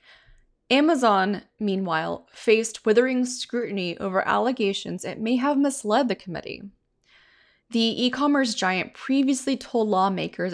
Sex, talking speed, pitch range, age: female, 110 wpm, 180-225 Hz, 20-39